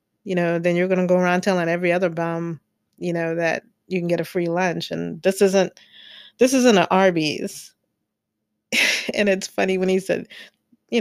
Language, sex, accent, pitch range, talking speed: English, female, American, 170-210 Hz, 195 wpm